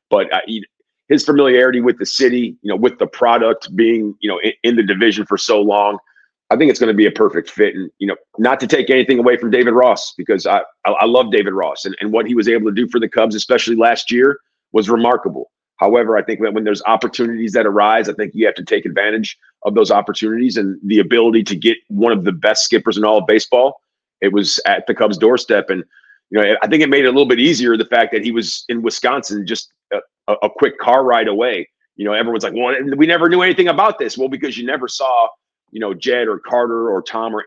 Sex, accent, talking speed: male, American, 240 wpm